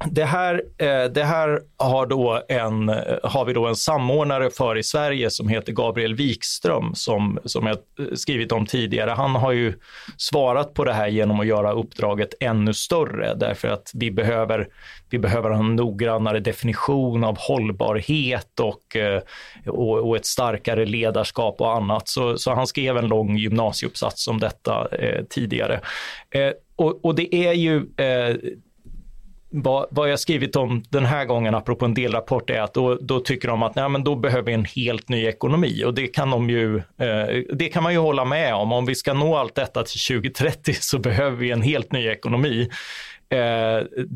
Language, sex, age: Swedish, male, 30-49